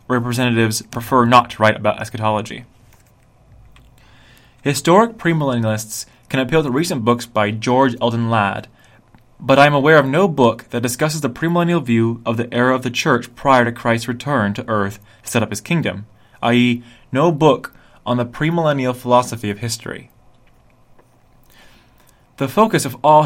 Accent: American